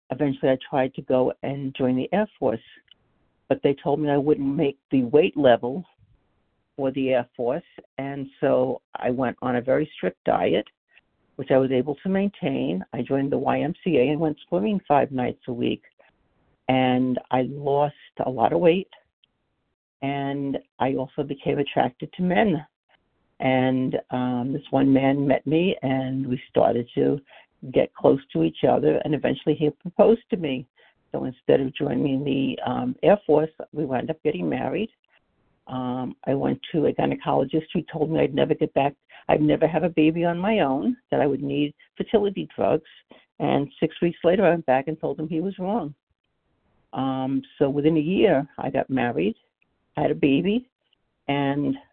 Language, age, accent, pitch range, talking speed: English, 60-79, American, 135-160 Hz, 175 wpm